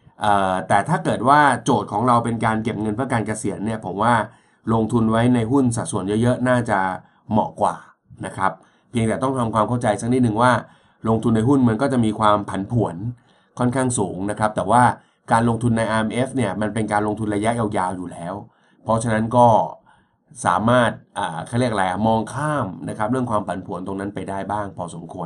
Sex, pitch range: male, 105-125 Hz